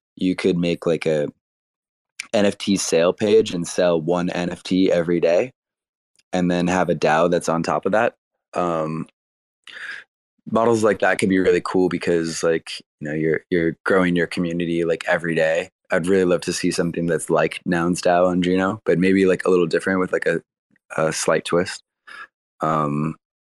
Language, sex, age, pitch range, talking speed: English, male, 20-39, 85-95 Hz, 175 wpm